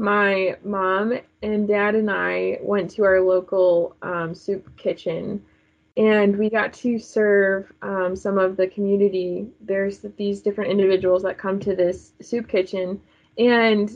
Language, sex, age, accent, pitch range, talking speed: English, female, 20-39, American, 190-220 Hz, 145 wpm